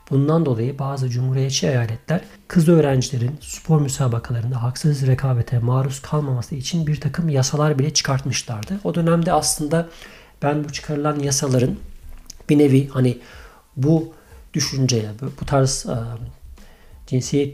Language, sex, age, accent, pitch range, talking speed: Turkish, male, 50-69, native, 125-150 Hz, 115 wpm